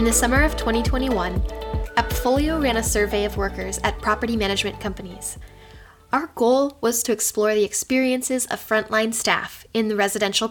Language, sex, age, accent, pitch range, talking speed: English, female, 10-29, American, 200-260 Hz, 160 wpm